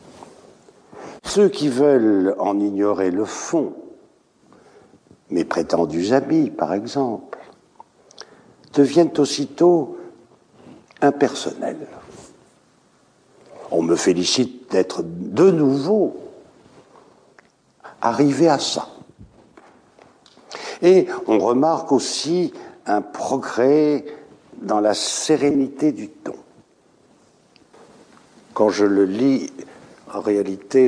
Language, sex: French, male